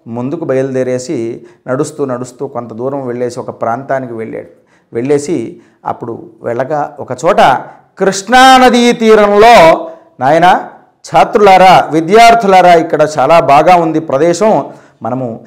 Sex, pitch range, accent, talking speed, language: male, 125-200 Hz, native, 95 wpm, Telugu